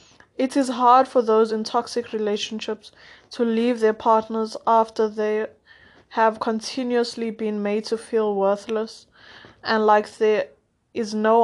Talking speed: 135 wpm